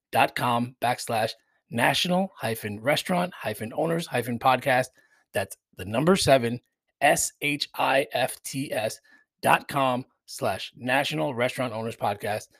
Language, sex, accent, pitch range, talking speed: English, male, American, 110-130 Hz, 130 wpm